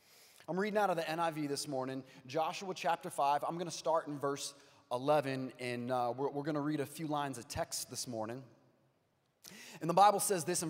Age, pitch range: 30-49, 130-180 Hz